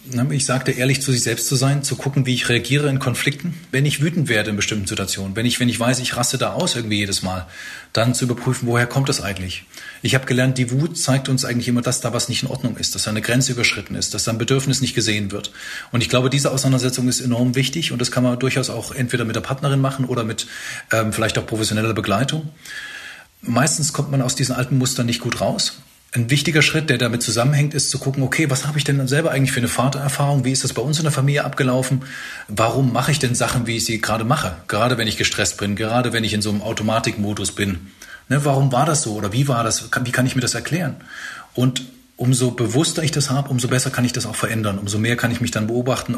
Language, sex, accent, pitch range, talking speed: German, male, German, 115-135 Hz, 245 wpm